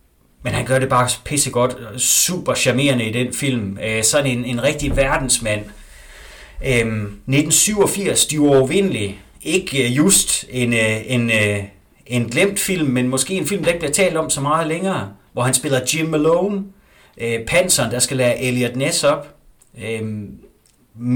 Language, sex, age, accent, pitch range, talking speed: Danish, male, 30-49, native, 115-150 Hz, 155 wpm